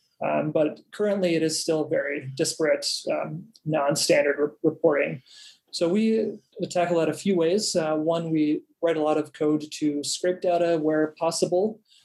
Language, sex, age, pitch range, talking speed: English, male, 30-49, 150-170 Hz, 155 wpm